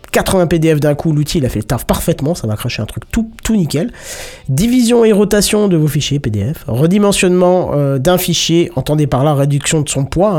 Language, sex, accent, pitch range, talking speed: French, male, French, 130-195 Hz, 215 wpm